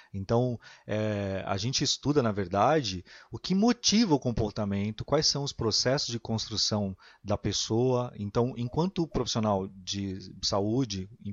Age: 30-49